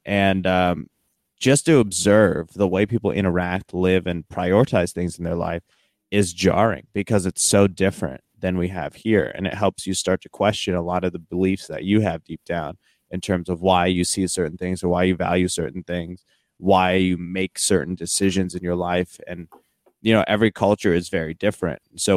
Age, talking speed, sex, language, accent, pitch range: 30-49, 200 wpm, male, English, American, 85-95 Hz